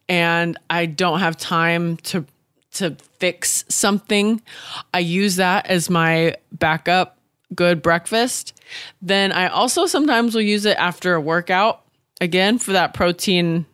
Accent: American